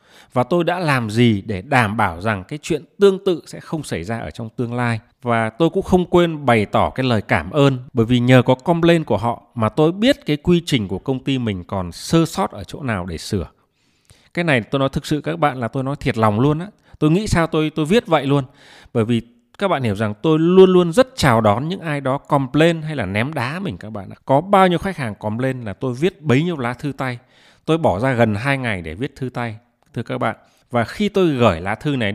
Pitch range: 115-155 Hz